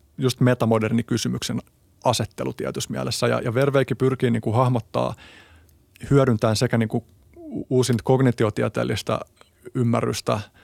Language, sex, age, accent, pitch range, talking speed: Finnish, male, 30-49, native, 110-130 Hz, 100 wpm